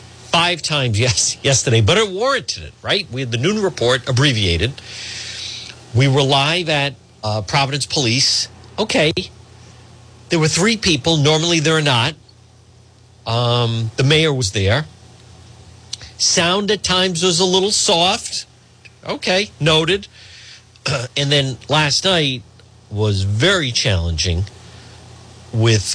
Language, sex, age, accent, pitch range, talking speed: English, male, 50-69, American, 110-145 Hz, 125 wpm